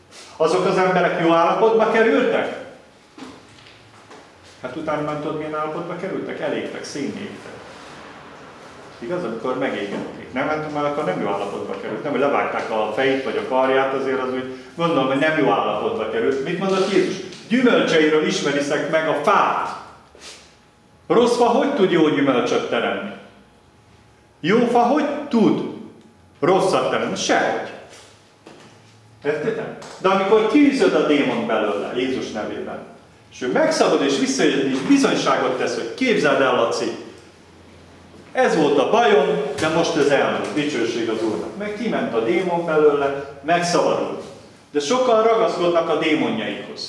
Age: 40-59